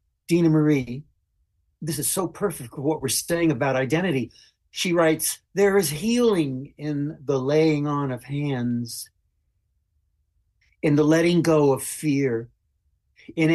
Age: 60-79